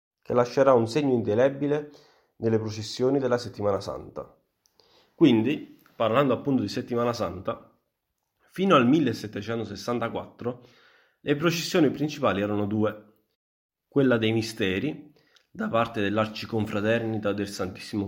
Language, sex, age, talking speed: Italian, male, 30-49, 105 wpm